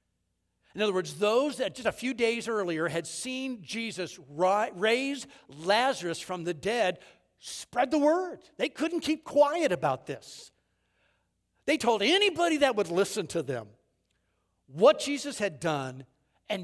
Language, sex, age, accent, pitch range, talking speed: English, male, 60-79, American, 145-235 Hz, 145 wpm